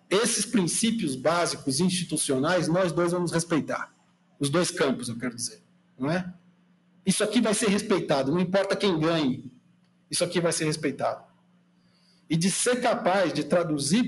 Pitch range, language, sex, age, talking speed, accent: 165-225 Hz, Portuguese, male, 60-79, 155 wpm, Brazilian